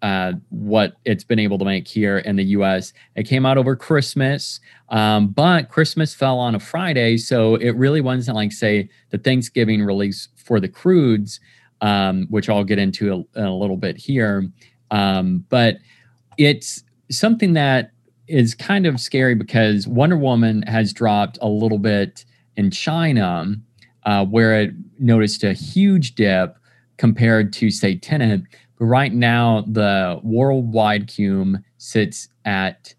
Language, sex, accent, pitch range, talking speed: English, male, American, 105-125 Hz, 150 wpm